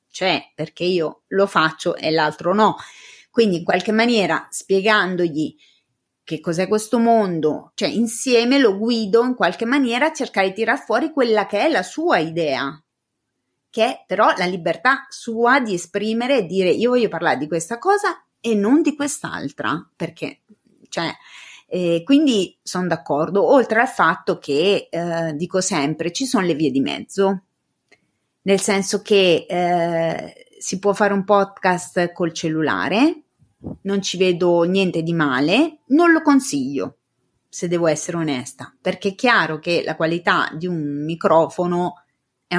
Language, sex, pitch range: Italian, female, 165-225 Hz